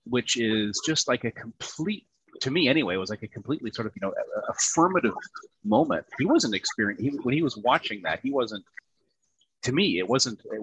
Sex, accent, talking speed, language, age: male, American, 215 wpm, English, 30-49